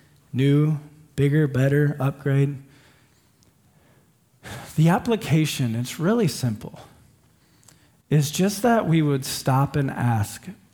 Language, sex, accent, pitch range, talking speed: English, male, American, 135-195 Hz, 95 wpm